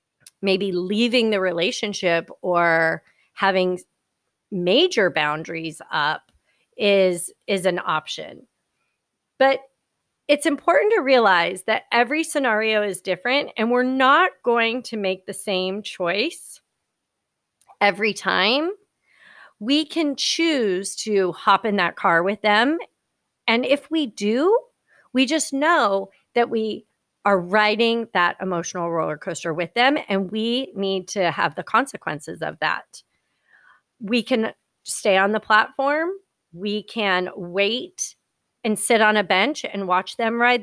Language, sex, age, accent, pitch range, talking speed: English, female, 30-49, American, 185-250 Hz, 130 wpm